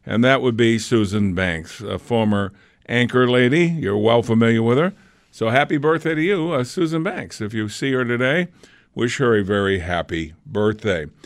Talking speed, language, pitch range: 180 wpm, English, 115-160 Hz